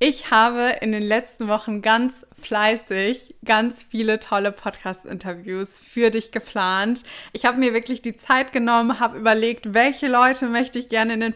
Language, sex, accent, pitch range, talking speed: German, female, German, 215-250 Hz, 165 wpm